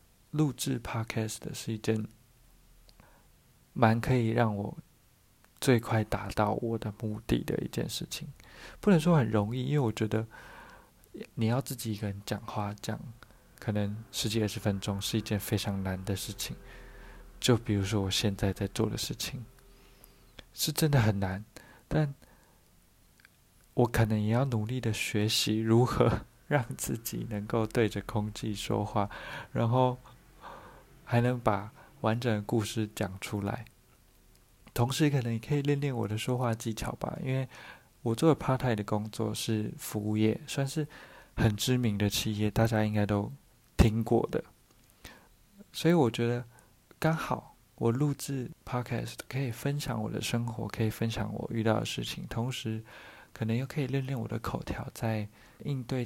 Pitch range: 105-125 Hz